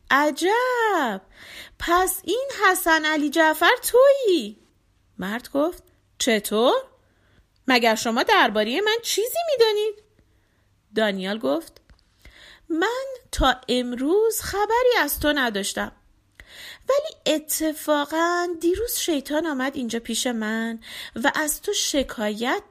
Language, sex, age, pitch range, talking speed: Persian, female, 30-49, 235-380 Hz, 100 wpm